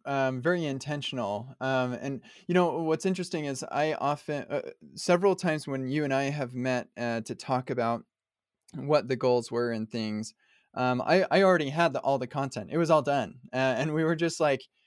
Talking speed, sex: 200 wpm, male